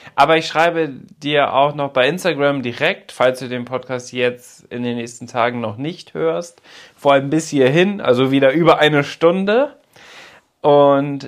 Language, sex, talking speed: German, male, 165 wpm